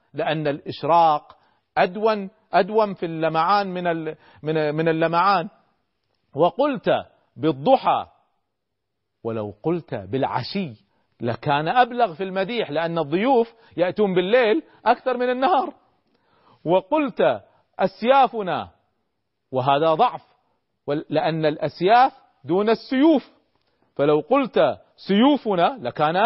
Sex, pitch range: male, 150-245 Hz